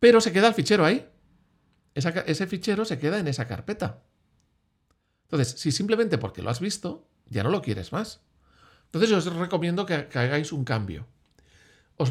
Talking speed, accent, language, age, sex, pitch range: 165 wpm, Spanish, Spanish, 40-59, male, 110-170 Hz